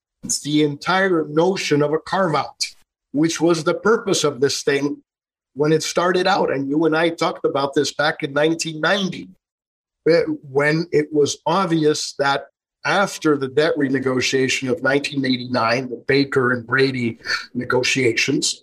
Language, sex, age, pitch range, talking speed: English, male, 50-69, 145-175 Hz, 140 wpm